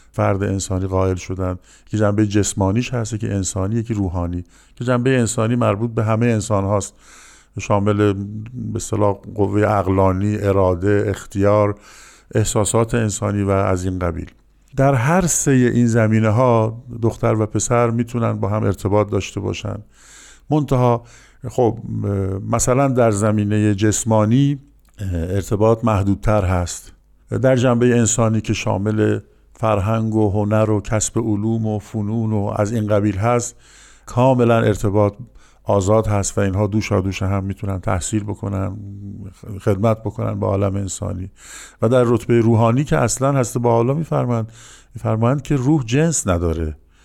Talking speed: 135 wpm